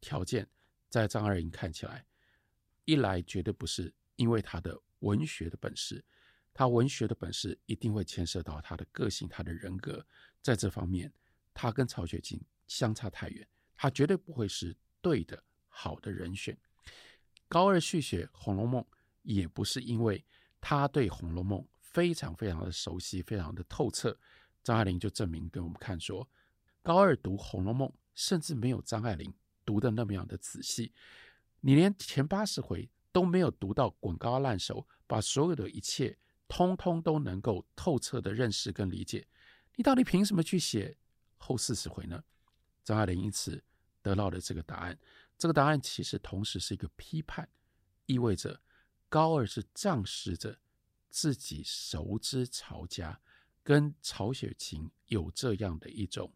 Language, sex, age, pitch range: Chinese, male, 50-69, 95-130 Hz